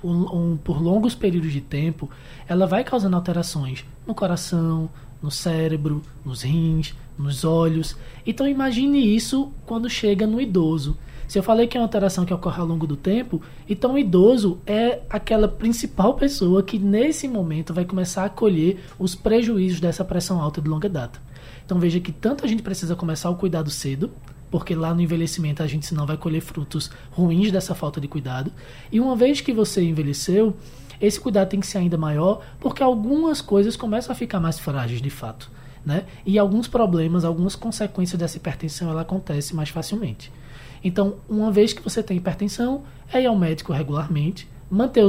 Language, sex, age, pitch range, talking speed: Portuguese, male, 20-39, 155-205 Hz, 180 wpm